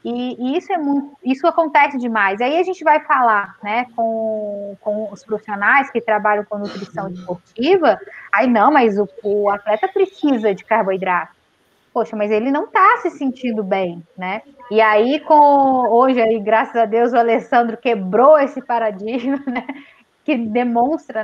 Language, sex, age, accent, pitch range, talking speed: Portuguese, female, 10-29, Brazilian, 215-285 Hz, 160 wpm